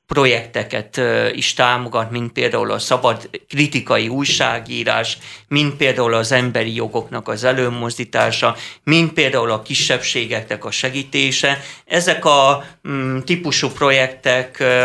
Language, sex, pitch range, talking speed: Hungarian, male, 120-150 Hz, 110 wpm